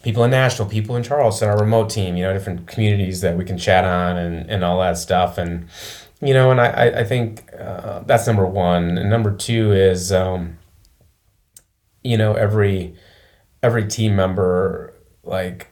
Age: 30-49